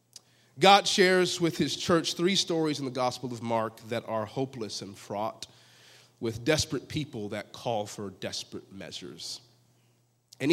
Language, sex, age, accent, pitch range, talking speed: English, male, 30-49, American, 120-155 Hz, 150 wpm